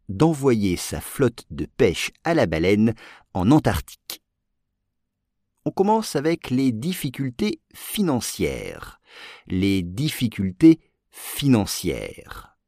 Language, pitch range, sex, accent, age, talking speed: English, 90-130 Hz, male, French, 50-69, 90 wpm